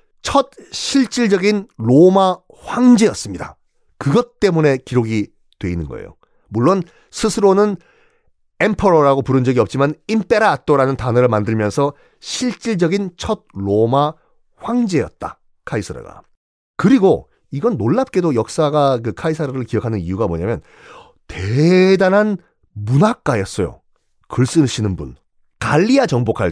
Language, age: Korean, 40-59